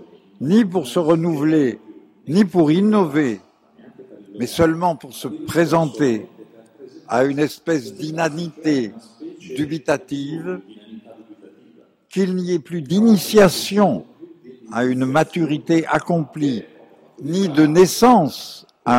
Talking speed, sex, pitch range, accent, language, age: 95 wpm, male, 120-175 Hz, French, Italian, 60-79